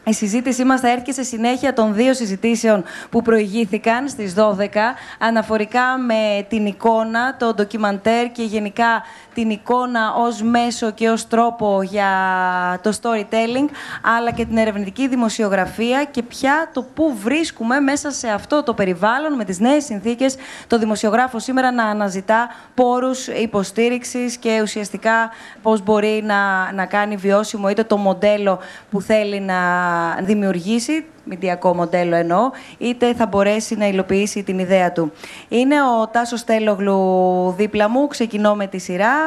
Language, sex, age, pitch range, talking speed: Greek, female, 20-39, 200-235 Hz, 145 wpm